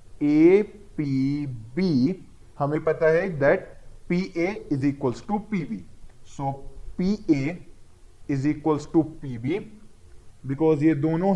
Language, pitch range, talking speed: Hindi, 140-185 Hz, 100 wpm